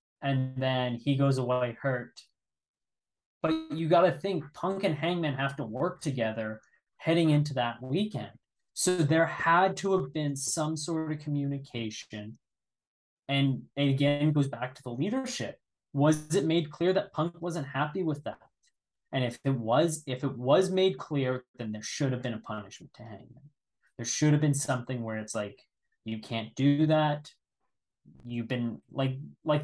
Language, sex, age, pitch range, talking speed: English, male, 20-39, 120-155 Hz, 170 wpm